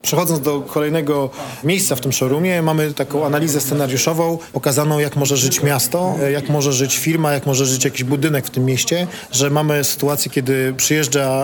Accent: native